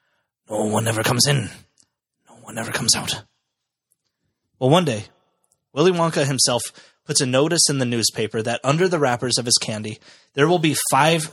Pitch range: 115-145 Hz